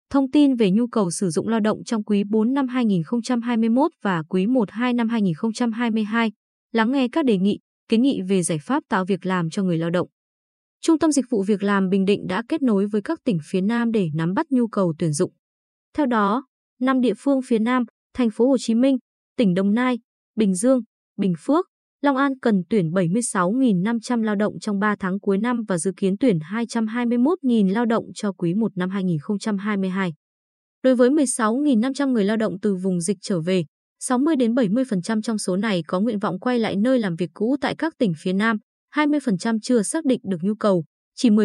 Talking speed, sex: 205 wpm, female